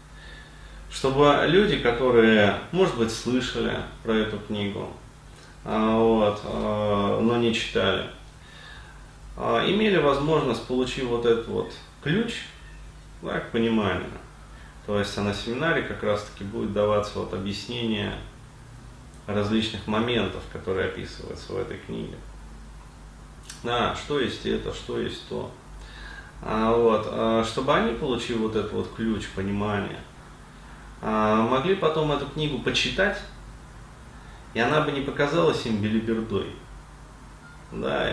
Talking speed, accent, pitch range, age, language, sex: 110 wpm, native, 95-120 Hz, 30-49, Russian, male